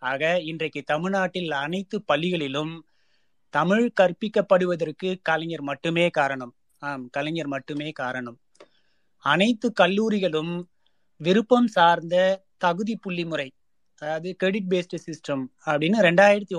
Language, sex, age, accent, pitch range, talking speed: Tamil, male, 30-49, native, 150-190 Hz, 100 wpm